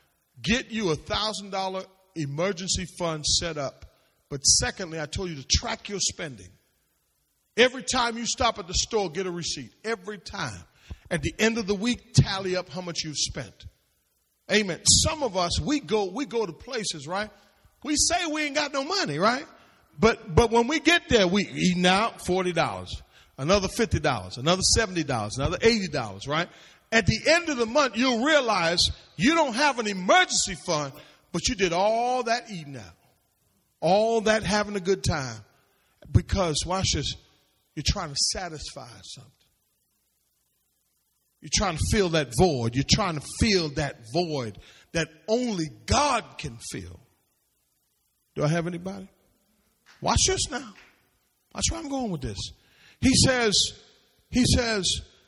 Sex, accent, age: male, American, 40-59